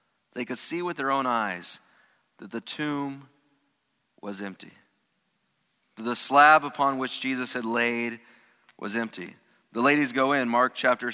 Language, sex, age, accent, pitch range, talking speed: English, male, 30-49, American, 125-150 Hz, 145 wpm